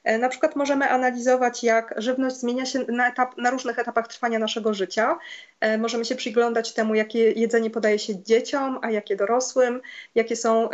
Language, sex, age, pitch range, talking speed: Polish, female, 20-39, 225-255 Hz, 170 wpm